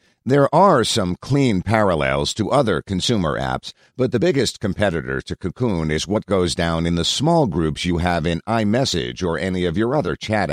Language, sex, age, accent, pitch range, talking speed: English, male, 50-69, American, 85-115 Hz, 190 wpm